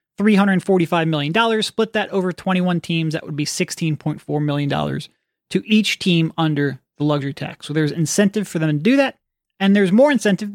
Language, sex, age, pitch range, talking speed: English, male, 30-49, 160-200 Hz, 170 wpm